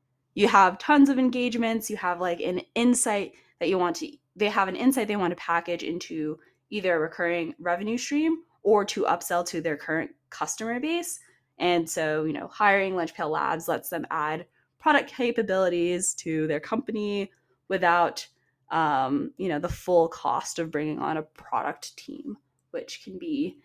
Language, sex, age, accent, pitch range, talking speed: English, female, 20-39, American, 160-215 Hz, 170 wpm